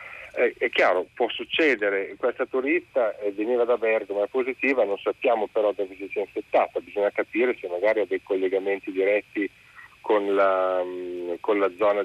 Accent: native